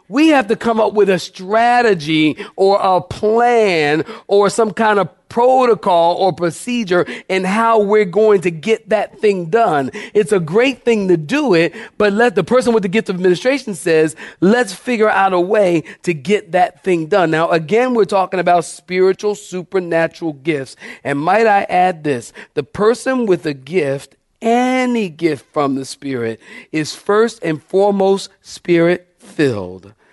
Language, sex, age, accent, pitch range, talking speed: English, male, 40-59, American, 155-210 Hz, 165 wpm